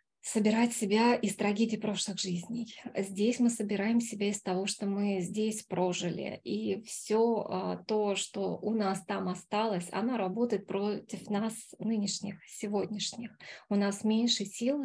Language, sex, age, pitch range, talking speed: Russian, female, 20-39, 195-220 Hz, 135 wpm